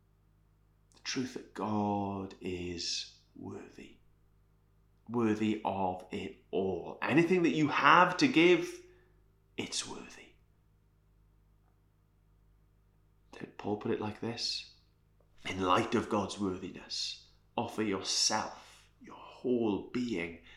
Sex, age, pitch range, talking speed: male, 30-49, 90-125 Hz, 95 wpm